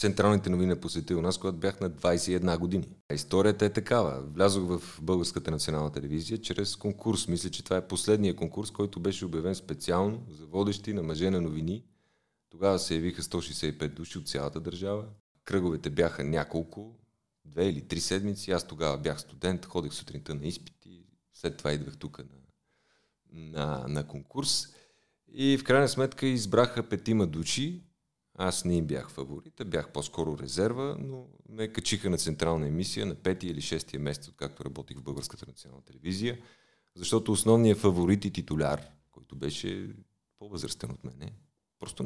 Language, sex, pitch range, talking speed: Bulgarian, male, 80-105 Hz, 160 wpm